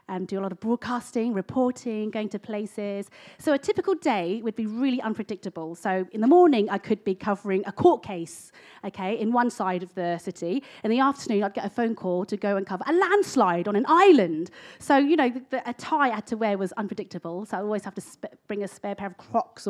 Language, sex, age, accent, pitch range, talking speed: English, female, 30-49, British, 190-260 Hz, 240 wpm